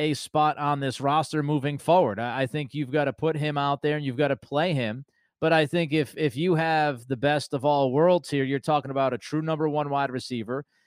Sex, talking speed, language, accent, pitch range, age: male, 245 wpm, English, American, 140-170 Hz, 30-49